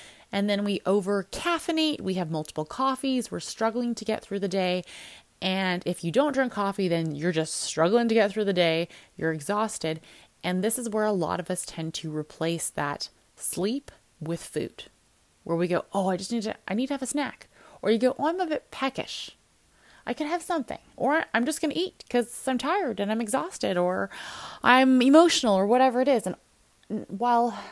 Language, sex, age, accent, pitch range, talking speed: English, female, 20-39, American, 165-235 Hz, 200 wpm